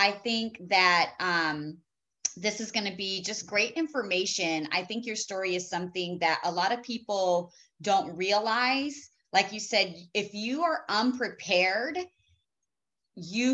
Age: 30-49